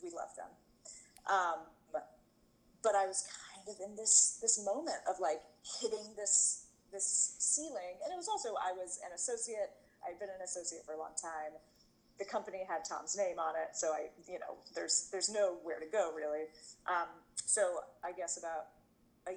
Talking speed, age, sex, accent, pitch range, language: 185 wpm, 30-49, female, American, 155-195 Hz, English